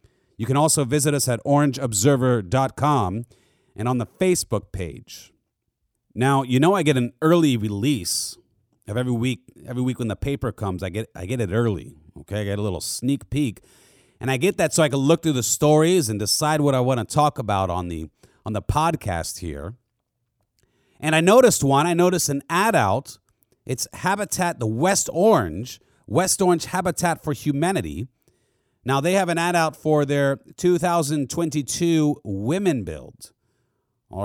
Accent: American